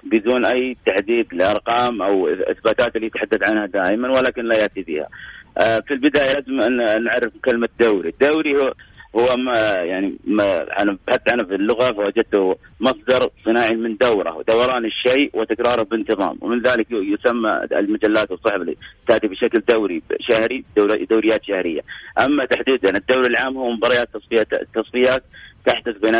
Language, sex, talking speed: Arabic, male, 145 wpm